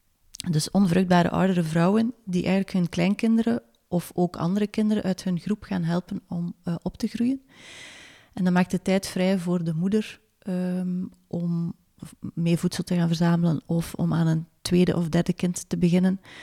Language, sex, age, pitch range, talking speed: Dutch, female, 30-49, 170-190 Hz, 175 wpm